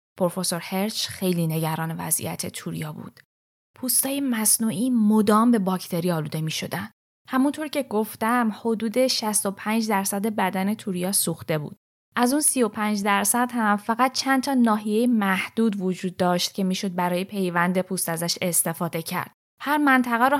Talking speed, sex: 140 wpm, female